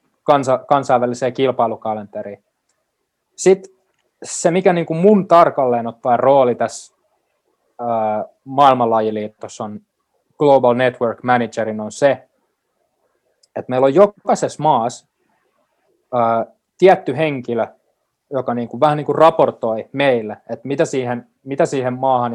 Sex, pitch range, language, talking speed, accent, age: male, 115-140 Hz, Finnish, 115 wpm, native, 20-39